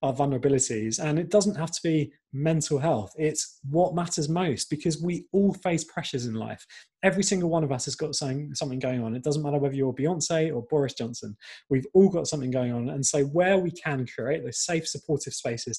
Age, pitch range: 20-39, 130-160 Hz